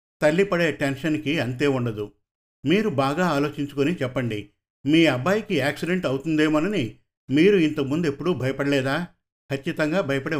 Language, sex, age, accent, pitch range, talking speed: Telugu, male, 50-69, native, 130-160 Hz, 110 wpm